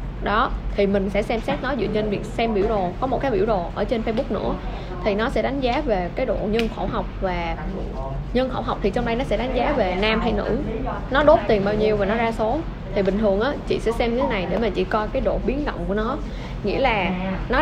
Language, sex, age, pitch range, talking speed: Vietnamese, female, 10-29, 190-225 Hz, 275 wpm